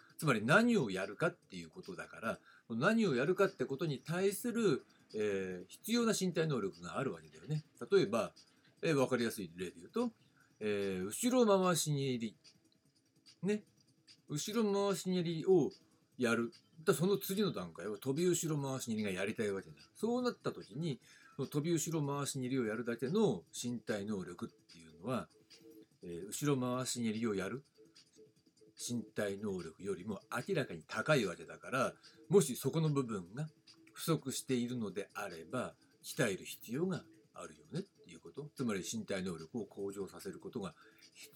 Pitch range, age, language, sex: 120-195 Hz, 40-59, Japanese, male